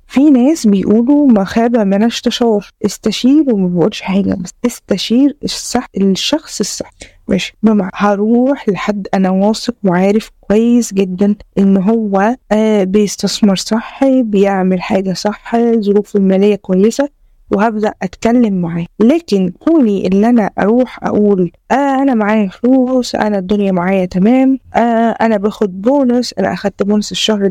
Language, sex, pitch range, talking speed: Arabic, female, 195-235 Hz, 130 wpm